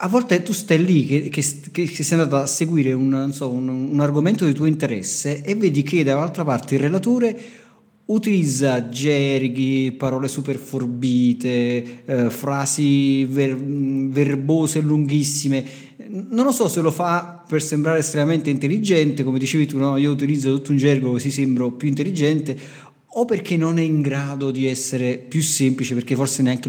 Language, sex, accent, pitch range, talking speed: Italian, male, native, 130-165 Hz, 165 wpm